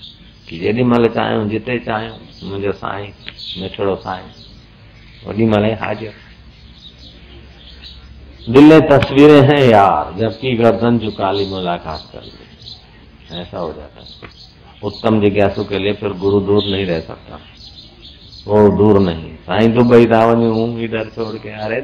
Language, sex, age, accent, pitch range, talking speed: Hindi, male, 50-69, native, 95-115 Hz, 135 wpm